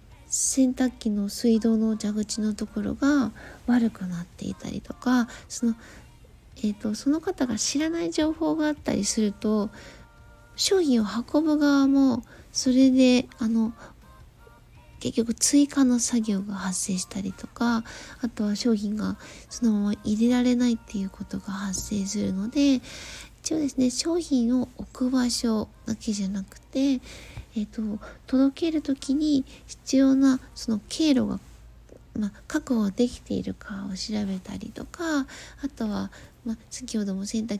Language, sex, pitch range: Japanese, female, 210-270 Hz